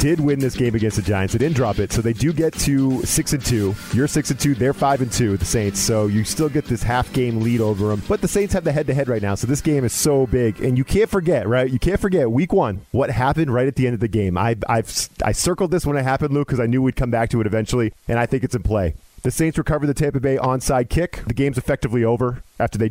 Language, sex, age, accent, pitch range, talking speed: English, male, 40-59, American, 115-145 Hz, 295 wpm